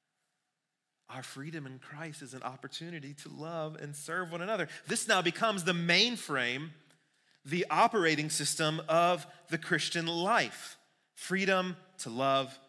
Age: 30-49